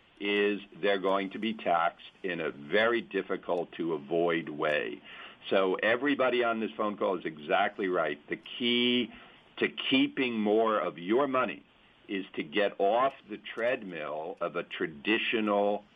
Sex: male